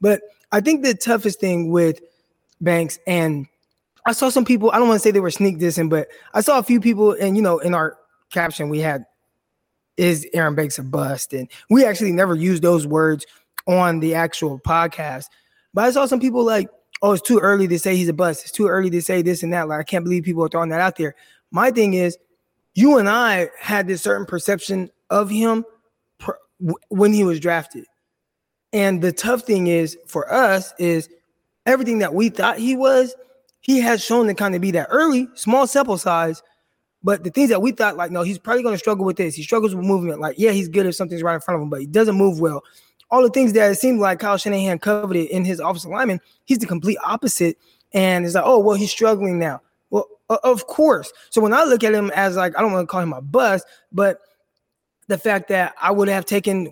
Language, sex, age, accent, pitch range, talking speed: English, male, 20-39, American, 170-220 Hz, 230 wpm